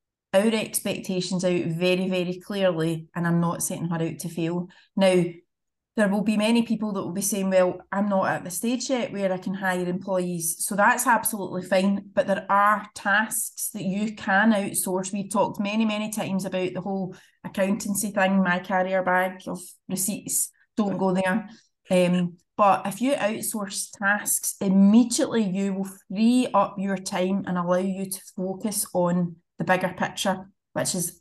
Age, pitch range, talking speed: 30-49, 185-210 Hz, 175 wpm